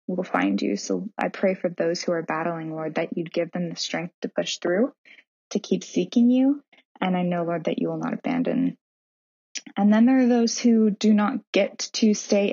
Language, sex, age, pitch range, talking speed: English, female, 20-39, 170-200 Hz, 215 wpm